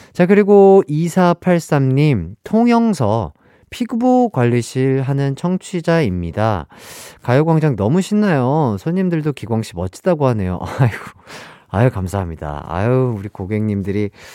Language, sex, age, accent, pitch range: Korean, male, 30-49, native, 95-155 Hz